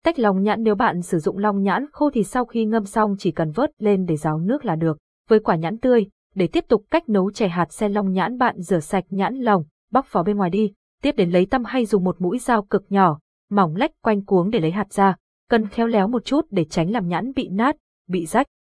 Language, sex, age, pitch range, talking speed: Vietnamese, female, 20-39, 185-235 Hz, 255 wpm